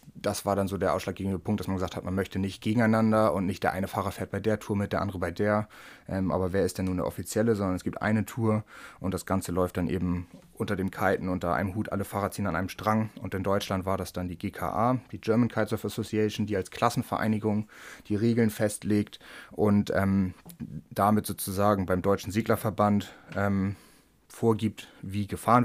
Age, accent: 30-49, German